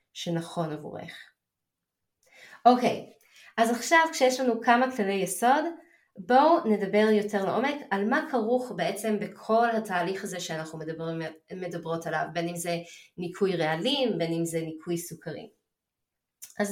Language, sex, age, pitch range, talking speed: Hebrew, female, 20-39, 170-230 Hz, 135 wpm